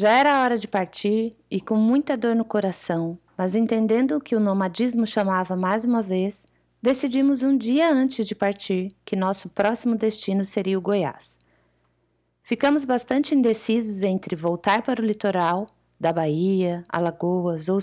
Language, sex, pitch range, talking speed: Portuguese, female, 180-230 Hz, 155 wpm